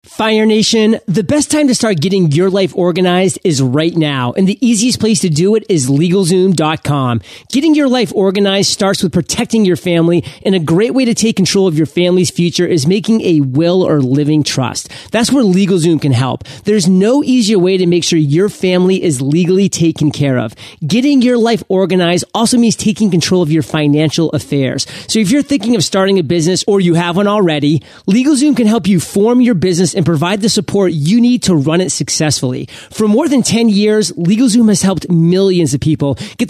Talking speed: 200 wpm